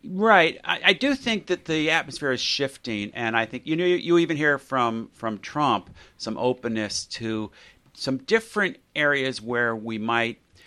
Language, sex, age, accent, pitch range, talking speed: English, male, 50-69, American, 105-130 Hz, 175 wpm